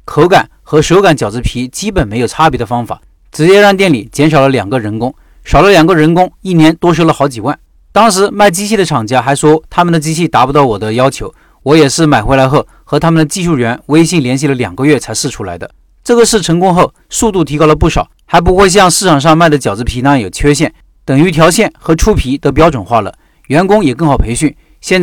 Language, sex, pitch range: Chinese, male, 130-170 Hz